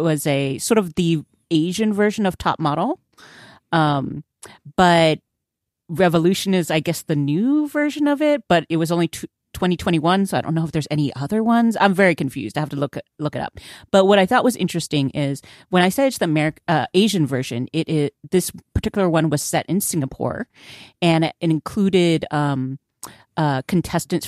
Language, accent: English, American